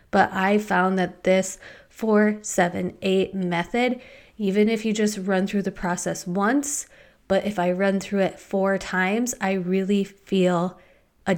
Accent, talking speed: American, 160 wpm